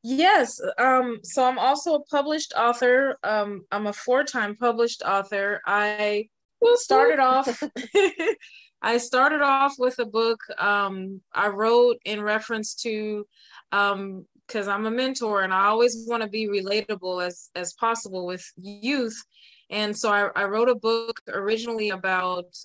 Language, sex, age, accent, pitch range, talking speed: English, female, 20-39, American, 190-245 Hz, 140 wpm